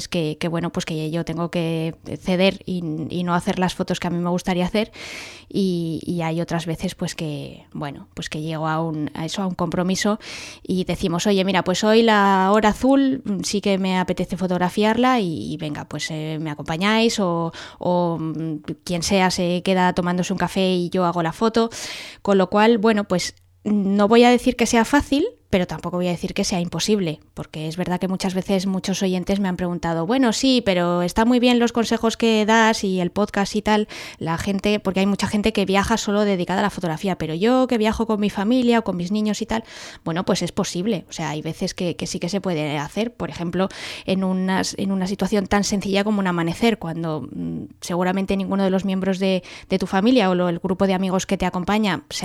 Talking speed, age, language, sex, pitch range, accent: 220 wpm, 20-39, English, female, 175-205 Hz, Spanish